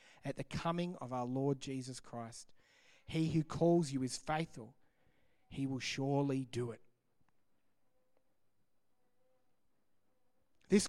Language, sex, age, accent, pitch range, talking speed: English, male, 30-49, Australian, 135-195 Hz, 110 wpm